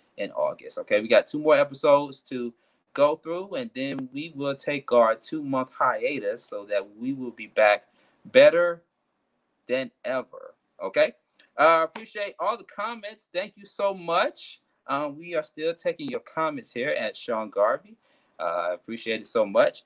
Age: 20-39